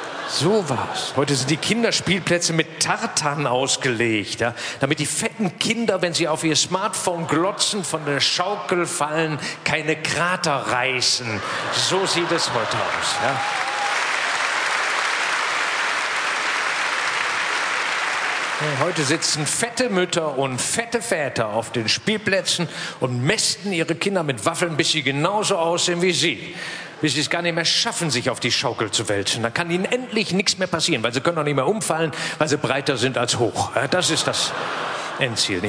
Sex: male